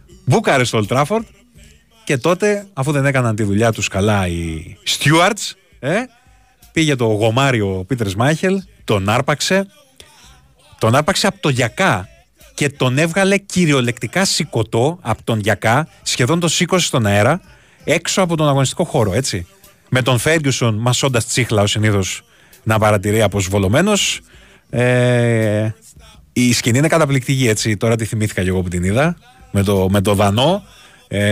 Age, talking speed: 30-49, 145 wpm